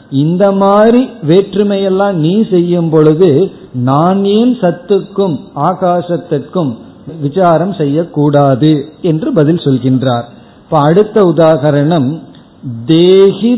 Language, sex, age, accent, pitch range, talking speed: Tamil, male, 50-69, native, 140-190 Hz, 55 wpm